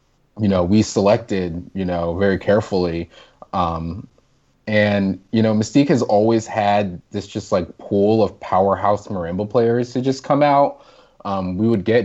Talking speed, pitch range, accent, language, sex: 160 wpm, 90-110 Hz, American, English, male